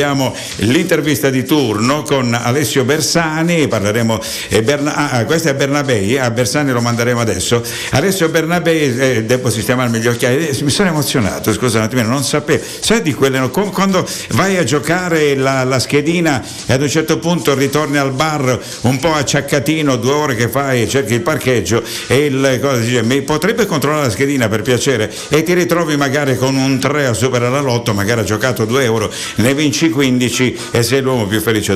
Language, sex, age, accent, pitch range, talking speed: Italian, male, 60-79, native, 115-150 Hz, 185 wpm